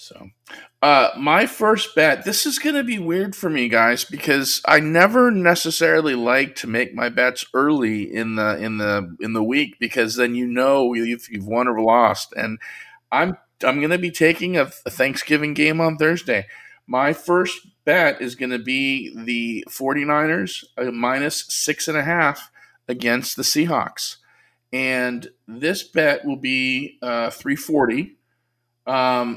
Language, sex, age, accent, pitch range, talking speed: English, male, 40-59, American, 115-155 Hz, 160 wpm